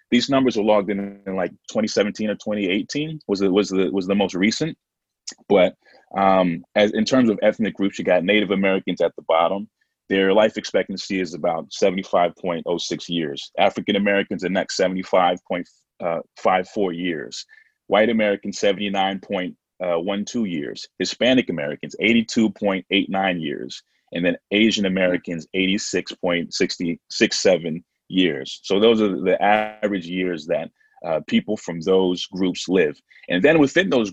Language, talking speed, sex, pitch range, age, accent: English, 135 wpm, male, 95-105 Hz, 30-49, American